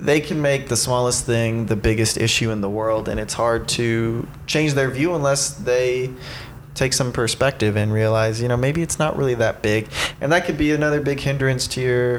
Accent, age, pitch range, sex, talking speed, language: American, 20-39, 115-140 Hz, male, 210 wpm, English